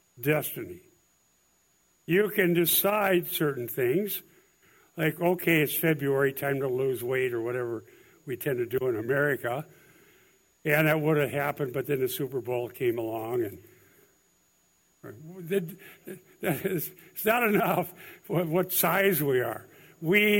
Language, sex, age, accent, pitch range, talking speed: English, male, 60-79, American, 140-190 Hz, 130 wpm